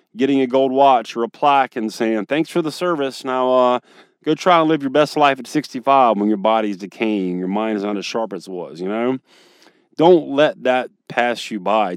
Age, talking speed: 30-49, 225 wpm